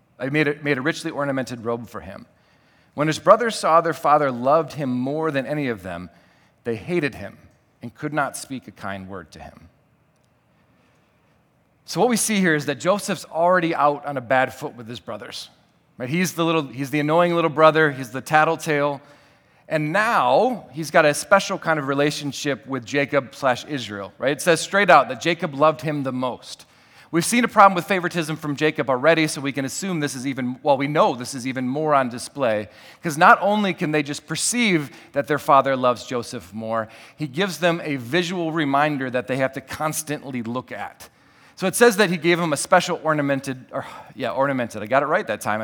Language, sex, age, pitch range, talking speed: English, male, 40-59, 130-165 Hz, 205 wpm